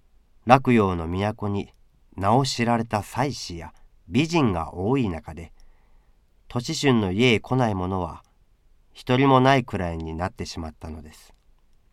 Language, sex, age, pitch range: Japanese, male, 40-59, 85-120 Hz